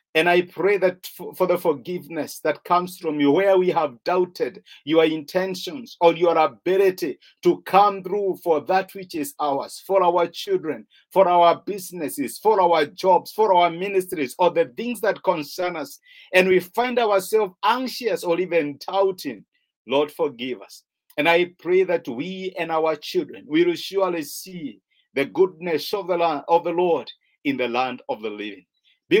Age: 50-69